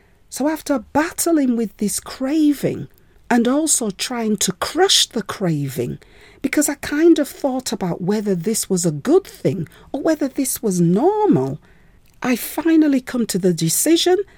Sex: female